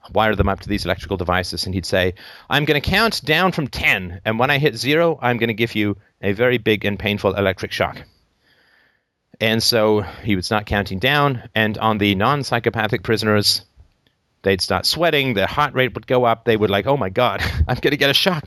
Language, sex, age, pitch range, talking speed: English, male, 40-59, 95-115 Hz, 220 wpm